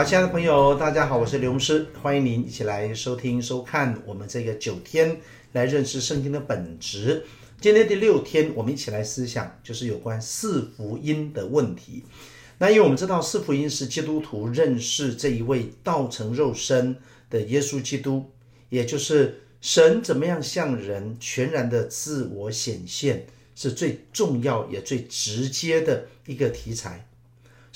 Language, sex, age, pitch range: Chinese, male, 50-69, 120-155 Hz